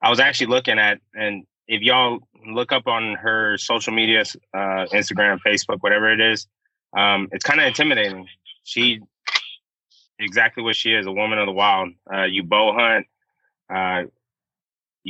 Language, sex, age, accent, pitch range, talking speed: English, male, 20-39, American, 95-115 Hz, 160 wpm